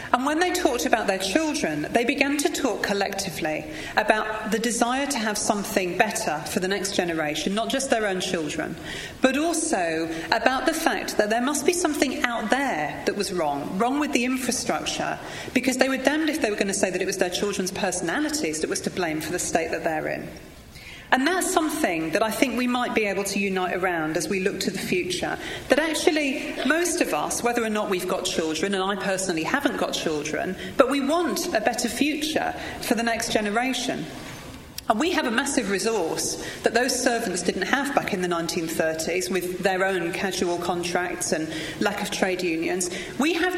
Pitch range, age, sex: 190-285 Hz, 40-59, female